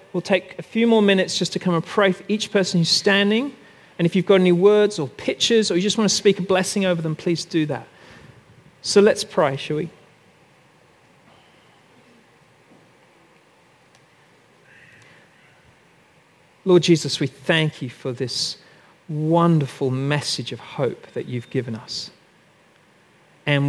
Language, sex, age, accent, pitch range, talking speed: English, male, 40-59, British, 145-190 Hz, 145 wpm